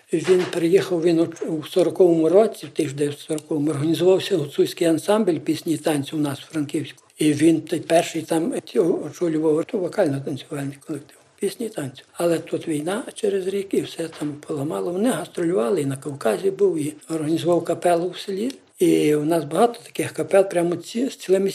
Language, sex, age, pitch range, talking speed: Ukrainian, male, 60-79, 155-185 Hz, 170 wpm